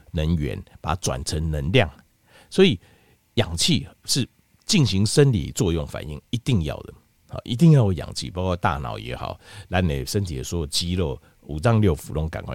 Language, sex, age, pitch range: Chinese, male, 50-69, 90-125 Hz